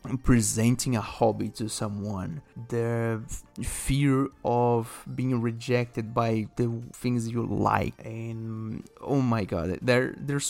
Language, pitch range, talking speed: English, 110-125 Hz, 125 wpm